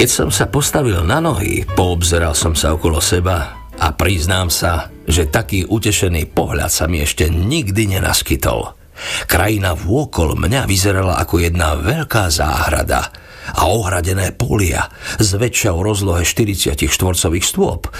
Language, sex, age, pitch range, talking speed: Slovak, male, 50-69, 80-105 Hz, 135 wpm